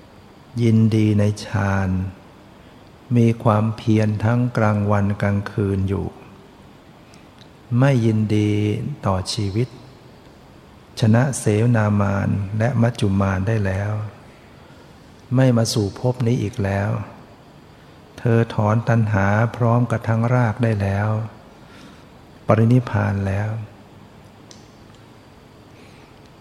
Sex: male